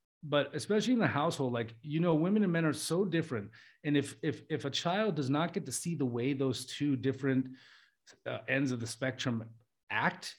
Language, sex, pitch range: English, male, 115-150 Hz